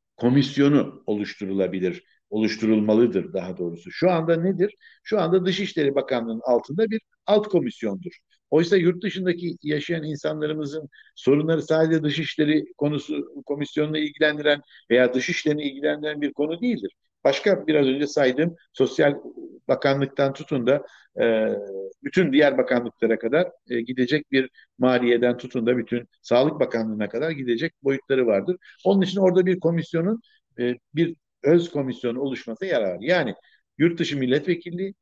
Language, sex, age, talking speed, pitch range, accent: Turkish, male, 60-79, 125 wpm, 125-180 Hz, native